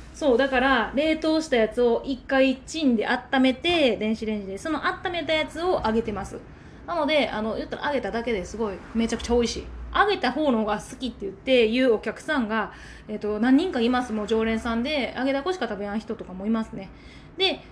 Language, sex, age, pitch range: Japanese, female, 20-39, 225-320 Hz